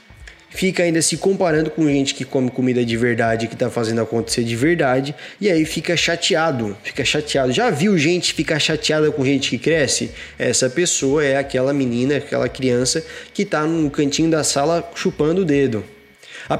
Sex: male